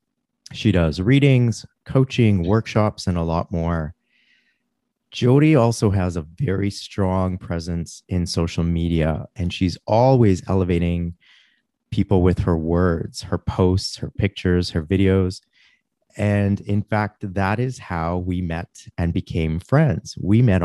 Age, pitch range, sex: 30-49, 90-105 Hz, male